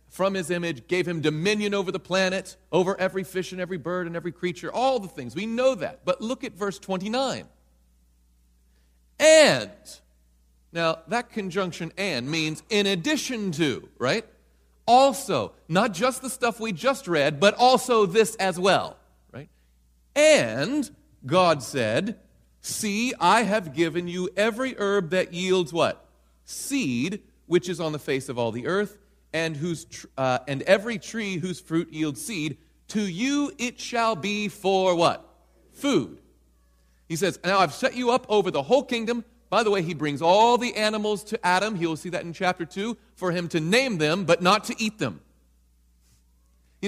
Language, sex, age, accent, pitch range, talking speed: English, male, 40-59, American, 155-225 Hz, 170 wpm